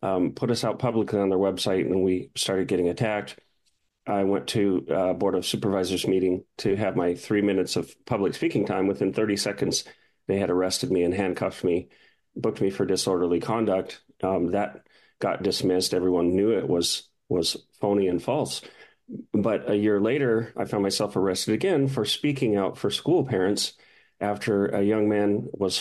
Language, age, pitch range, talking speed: English, 40-59, 95-110 Hz, 180 wpm